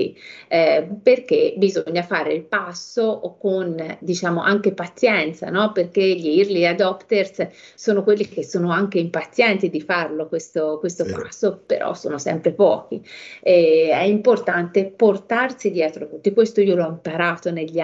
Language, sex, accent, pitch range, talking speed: Italian, female, native, 170-215 Hz, 140 wpm